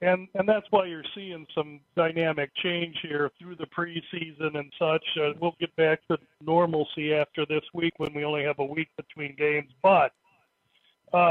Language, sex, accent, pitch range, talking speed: English, male, American, 170-205 Hz, 180 wpm